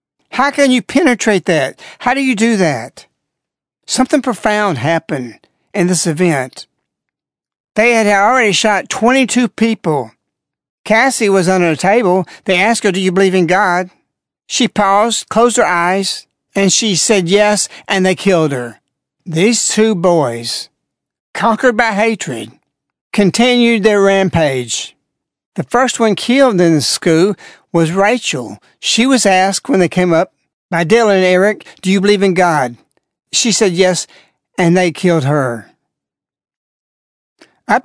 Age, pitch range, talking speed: 60-79, 170-220 Hz, 145 wpm